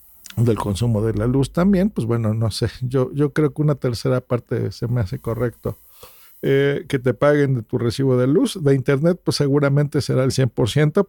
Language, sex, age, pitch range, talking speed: Spanish, male, 50-69, 120-155 Hz, 200 wpm